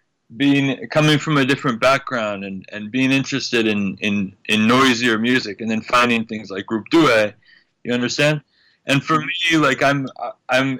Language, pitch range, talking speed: English, 120-145 Hz, 165 wpm